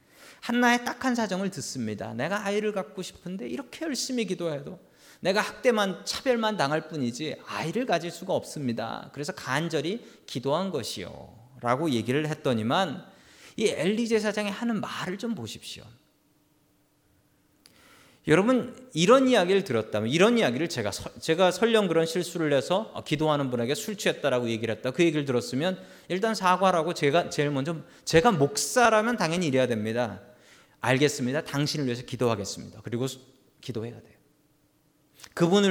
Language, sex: Korean, male